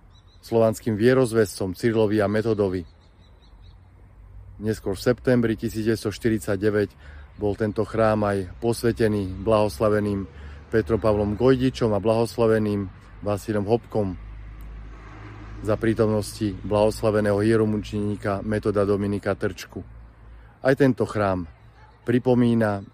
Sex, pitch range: male, 100-115 Hz